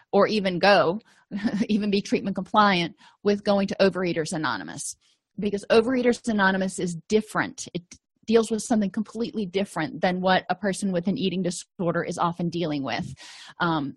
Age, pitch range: 30-49, 180-230 Hz